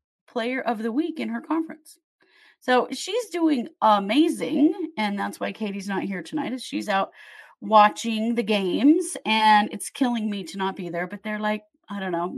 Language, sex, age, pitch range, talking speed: English, female, 30-49, 205-310 Hz, 185 wpm